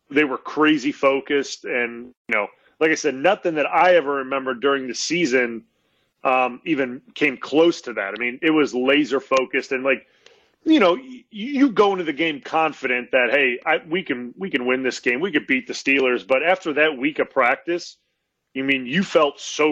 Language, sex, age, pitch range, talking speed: English, male, 30-49, 130-155 Hz, 205 wpm